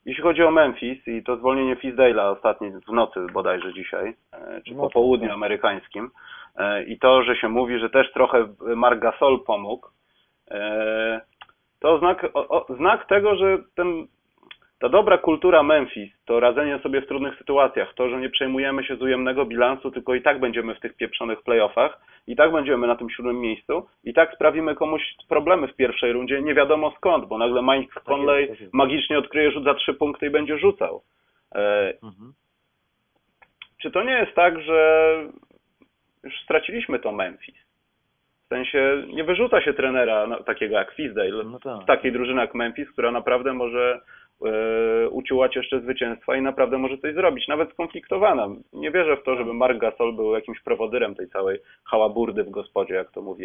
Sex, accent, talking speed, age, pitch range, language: male, native, 165 wpm, 30-49, 120-155 Hz, Polish